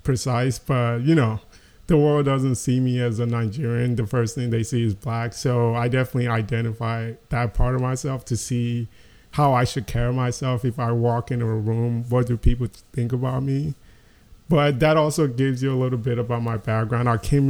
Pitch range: 120-145 Hz